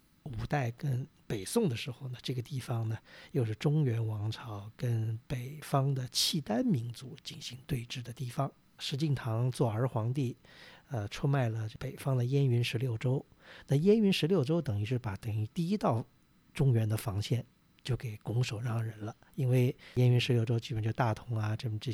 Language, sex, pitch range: Chinese, male, 120-145 Hz